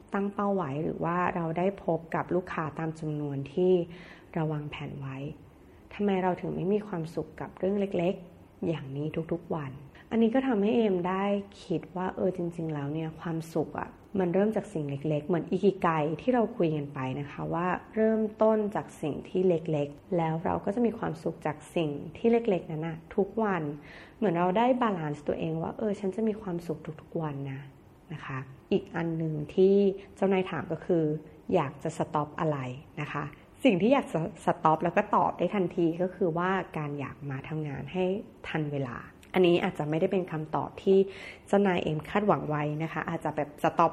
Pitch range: 155-195 Hz